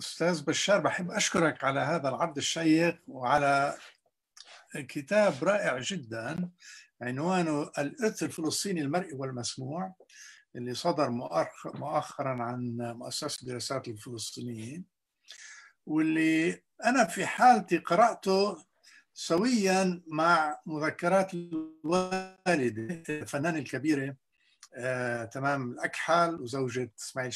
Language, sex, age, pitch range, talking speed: English, male, 60-79, 125-170 Hz, 85 wpm